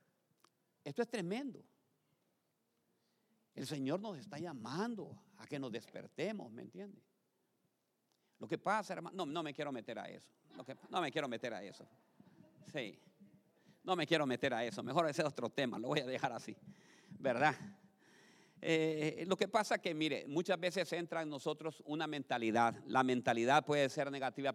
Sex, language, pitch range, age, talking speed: male, Spanish, 125-190 Hz, 50-69, 170 wpm